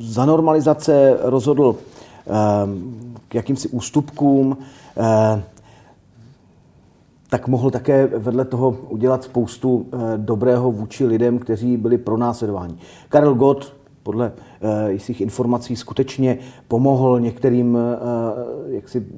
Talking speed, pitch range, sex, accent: 90 wpm, 110-135 Hz, male, native